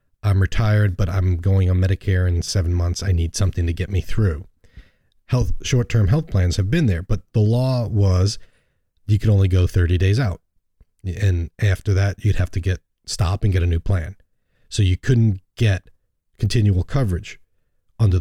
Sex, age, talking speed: male, 40-59, 180 wpm